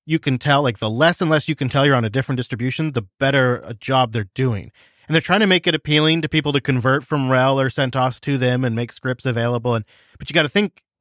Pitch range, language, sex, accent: 125-175 Hz, English, male, American